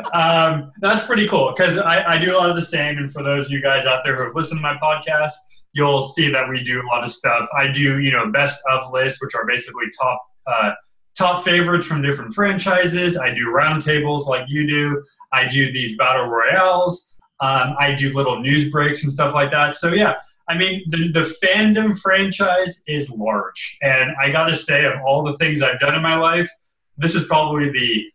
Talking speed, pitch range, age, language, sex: 215 wpm, 130-170 Hz, 20-39, English, male